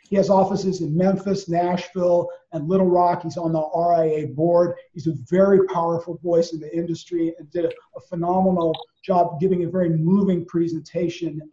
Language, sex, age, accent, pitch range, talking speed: English, male, 40-59, American, 170-190 Hz, 165 wpm